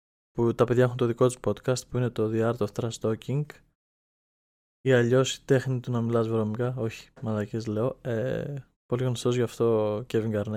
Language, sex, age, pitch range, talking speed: Greek, male, 20-39, 115-130 Hz, 200 wpm